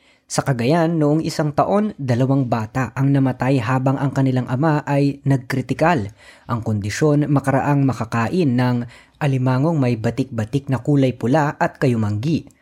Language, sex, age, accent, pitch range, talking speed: Filipino, female, 20-39, native, 110-145 Hz, 135 wpm